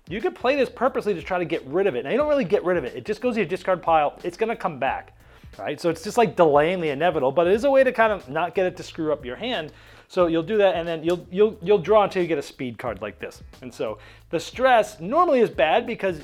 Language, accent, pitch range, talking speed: English, American, 140-215 Hz, 305 wpm